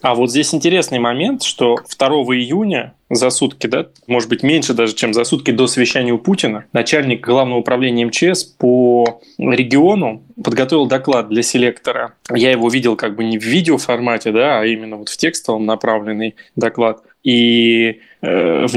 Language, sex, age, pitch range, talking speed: Russian, male, 20-39, 115-130 Hz, 150 wpm